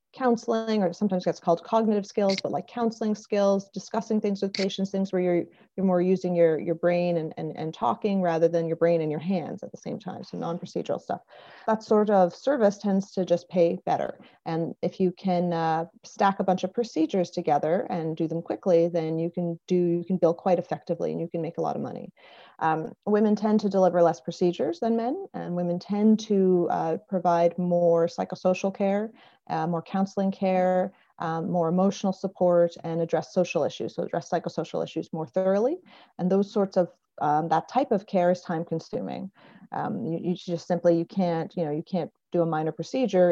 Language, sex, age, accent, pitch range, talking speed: English, female, 30-49, American, 165-195 Hz, 200 wpm